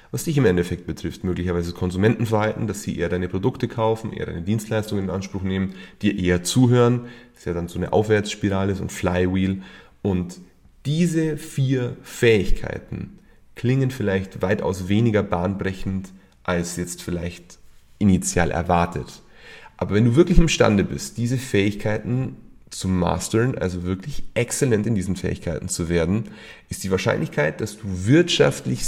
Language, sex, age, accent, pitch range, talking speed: German, male, 30-49, German, 90-115 Hz, 150 wpm